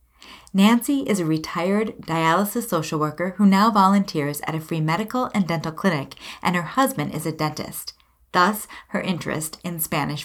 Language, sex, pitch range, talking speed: English, female, 155-215 Hz, 165 wpm